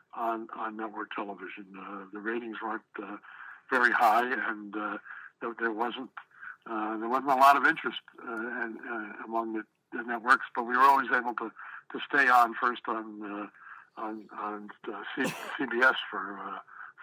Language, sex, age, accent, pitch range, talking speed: English, male, 60-79, American, 110-120 Hz, 170 wpm